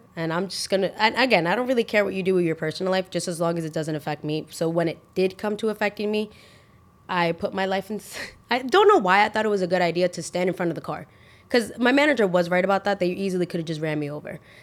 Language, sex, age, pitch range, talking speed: English, female, 20-39, 165-210 Hz, 290 wpm